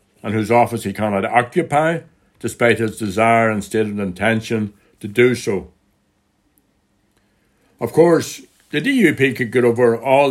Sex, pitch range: male, 100-120 Hz